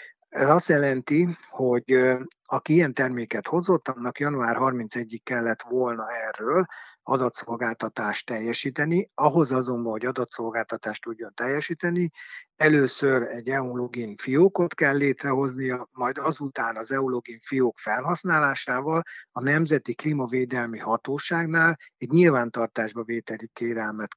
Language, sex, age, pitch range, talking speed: Hungarian, male, 60-79, 120-145 Hz, 105 wpm